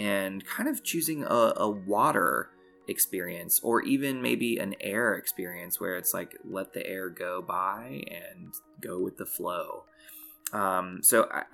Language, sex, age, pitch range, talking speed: English, male, 20-39, 95-155 Hz, 155 wpm